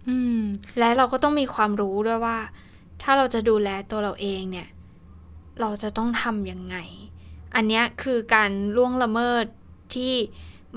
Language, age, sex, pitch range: Thai, 20-39, female, 185-235 Hz